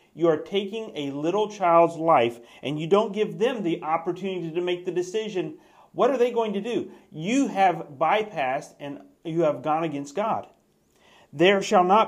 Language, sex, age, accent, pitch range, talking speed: English, male, 40-59, American, 150-200 Hz, 180 wpm